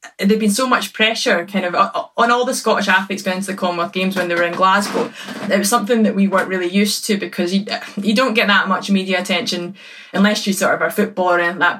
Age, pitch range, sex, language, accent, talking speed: 20-39, 170-200 Hz, female, English, British, 240 wpm